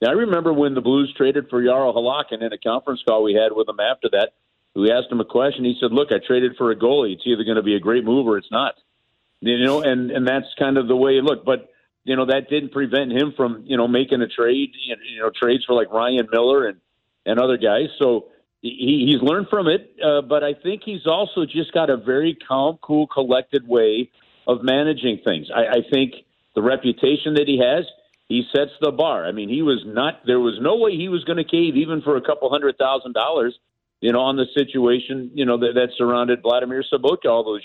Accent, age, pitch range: American, 50-69, 120-150 Hz